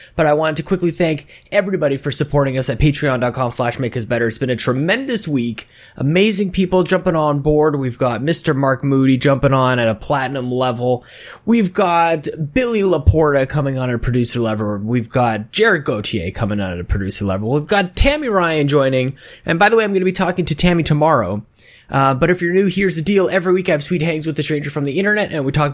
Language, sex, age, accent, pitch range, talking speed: English, male, 20-39, American, 125-170 Hz, 220 wpm